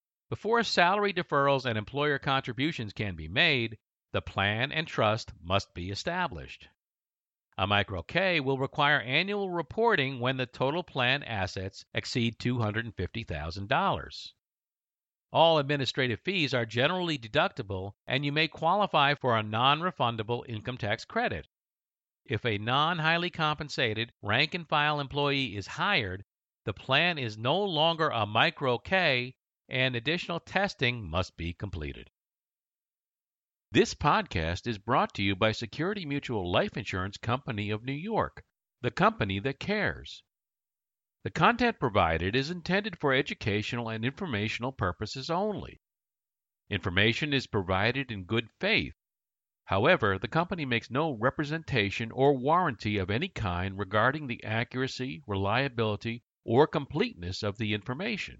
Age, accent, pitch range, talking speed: 50-69, American, 105-150 Hz, 125 wpm